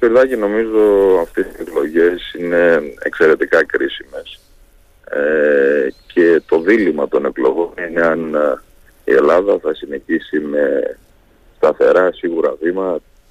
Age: 30-49